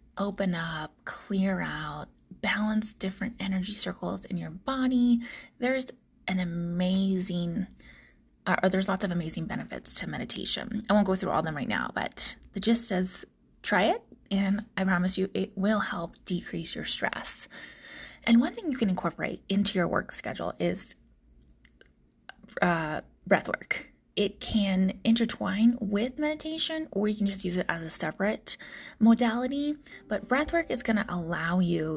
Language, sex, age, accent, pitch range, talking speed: English, female, 20-39, American, 185-235 Hz, 160 wpm